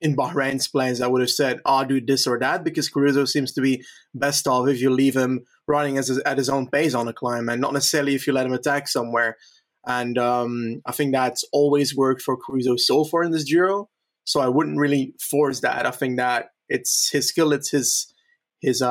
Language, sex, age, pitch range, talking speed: English, male, 20-39, 125-145 Hz, 225 wpm